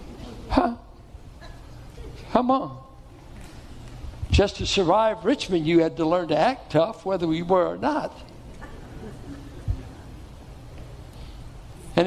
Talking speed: 105 wpm